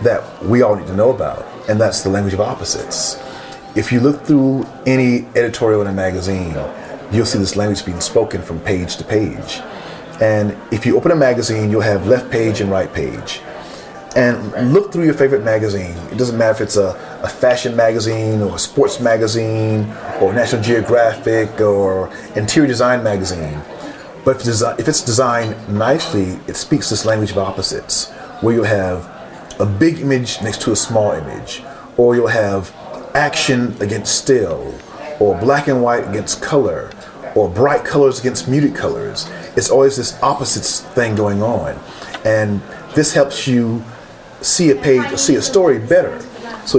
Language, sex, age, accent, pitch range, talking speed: English, male, 30-49, American, 105-130 Hz, 165 wpm